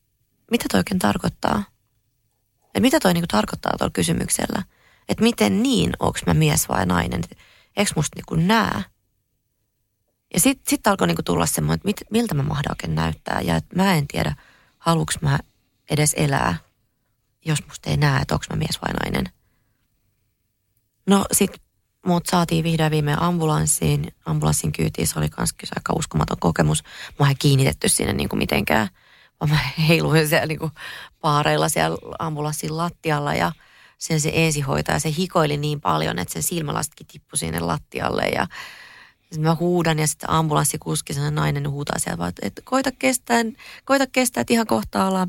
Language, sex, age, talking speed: Finnish, female, 30-49, 155 wpm